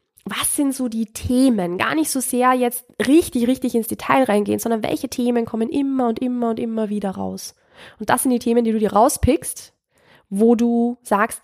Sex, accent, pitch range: female, German, 210-255 Hz